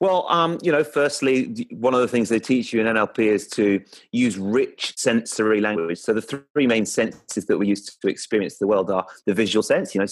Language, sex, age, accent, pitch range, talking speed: English, male, 30-49, British, 105-135 Hz, 225 wpm